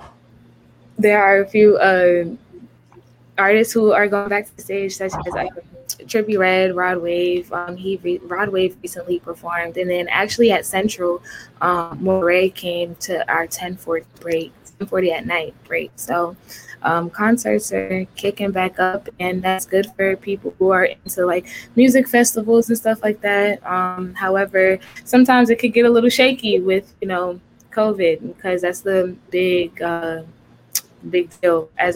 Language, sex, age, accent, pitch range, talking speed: English, female, 10-29, American, 170-200 Hz, 165 wpm